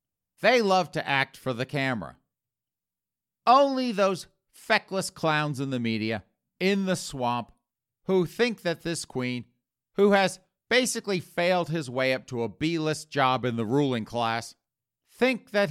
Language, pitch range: English, 120-180 Hz